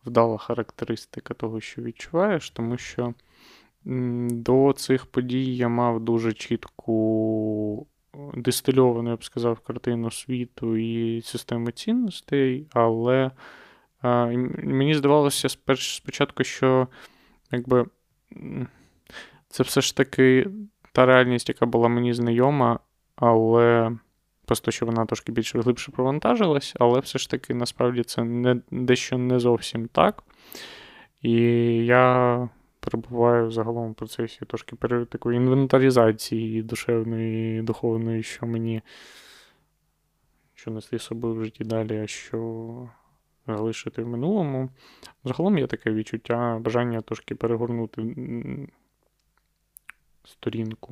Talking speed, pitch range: 110 wpm, 115-130 Hz